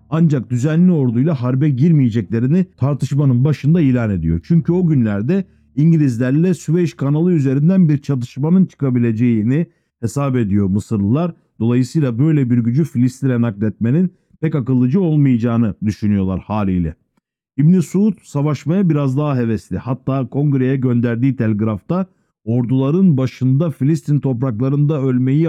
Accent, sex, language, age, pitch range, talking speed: native, male, Turkish, 50-69, 120-160 Hz, 115 wpm